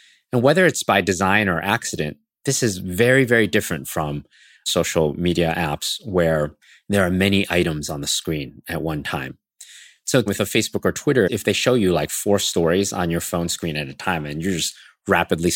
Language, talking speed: English, 195 wpm